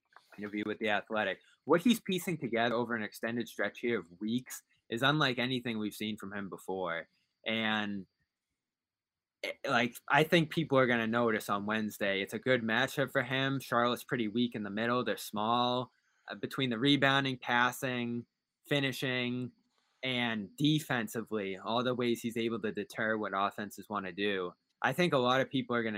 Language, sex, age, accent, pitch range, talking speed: English, male, 20-39, American, 105-125 Hz, 180 wpm